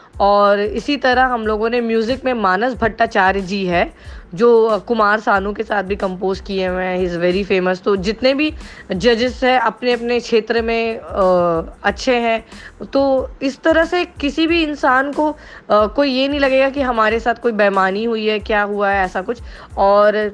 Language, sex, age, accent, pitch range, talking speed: Hindi, female, 20-39, native, 210-260 Hz, 185 wpm